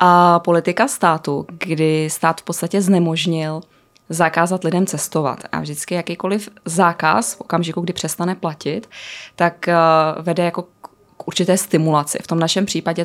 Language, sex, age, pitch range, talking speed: Czech, female, 20-39, 160-180 Hz, 135 wpm